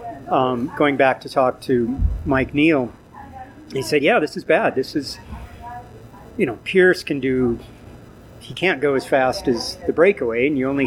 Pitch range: 120-150 Hz